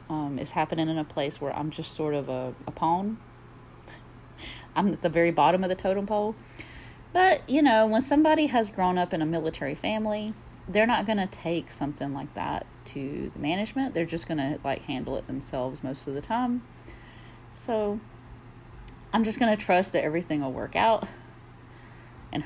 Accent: American